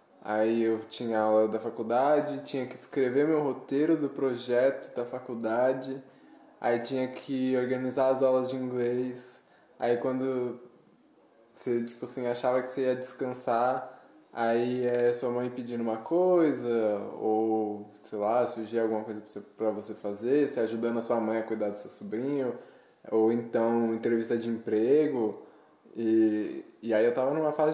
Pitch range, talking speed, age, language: 115-135 Hz, 155 wpm, 10-29, Portuguese